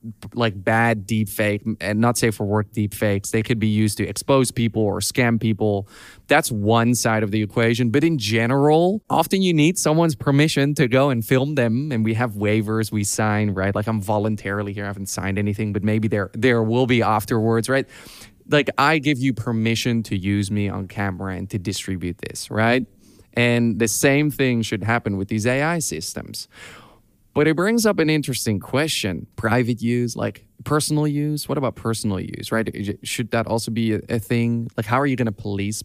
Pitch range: 105-125 Hz